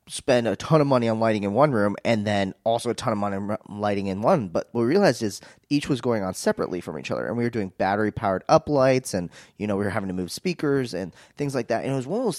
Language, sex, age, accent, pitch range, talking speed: English, male, 20-39, American, 100-130 Hz, 295 wpm